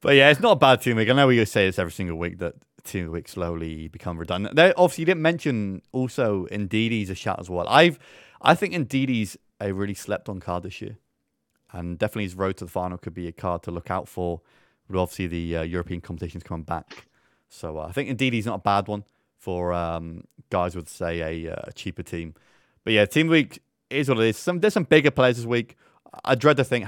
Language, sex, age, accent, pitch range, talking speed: English, male, 20-39, British, 85-110 Hz, 235 wpm